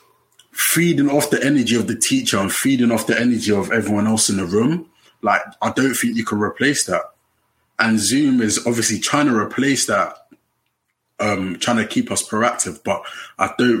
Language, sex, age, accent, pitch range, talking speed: English, male, 20-39, British, 105-120 Hz, 185 wpm